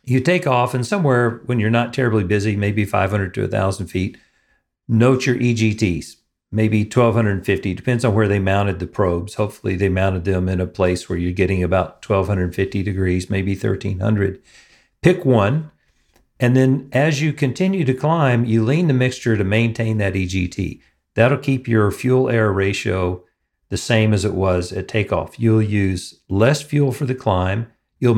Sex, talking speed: male, 170 wpm